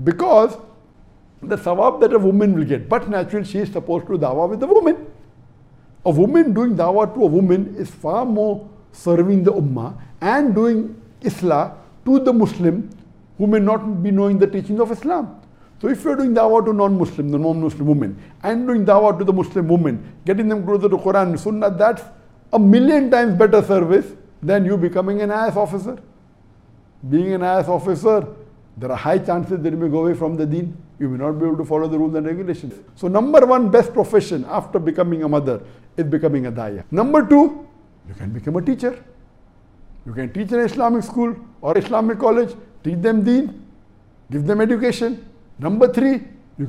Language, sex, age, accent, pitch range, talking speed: English, male, 60-79, Indian, 155-230 Hz, 195 wpm